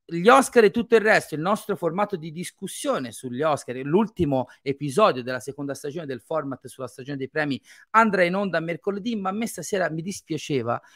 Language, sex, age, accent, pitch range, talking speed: Italian, male, 30-49, native, 130-175 Hz, 185 wpm